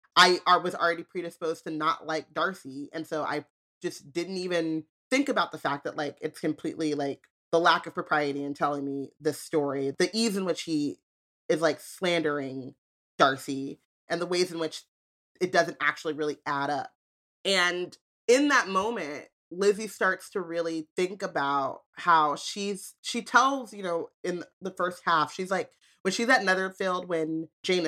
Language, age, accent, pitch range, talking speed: English, 30-49, American, 155-195 Hz, 170 wpm